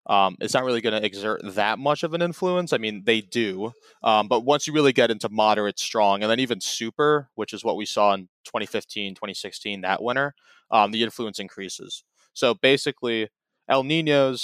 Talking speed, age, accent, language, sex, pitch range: 195 wpm, 20-39, American, English, male, 100-125 Hz